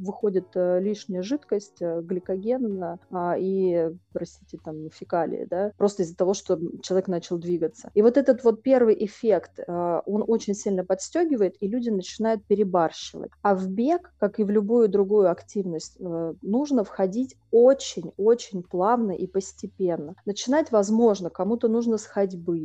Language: Russian